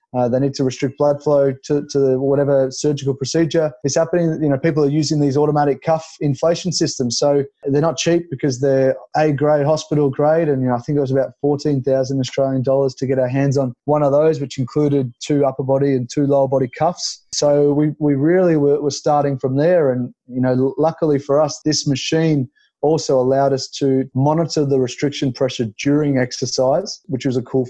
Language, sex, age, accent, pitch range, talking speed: English, male, 20-39, Australian, 130-145 Hz, 205 wpm